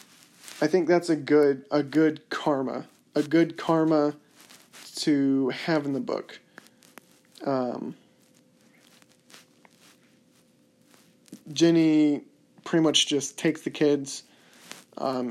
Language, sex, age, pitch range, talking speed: English, male, 20-39, 130-155 Hz, 100 wpm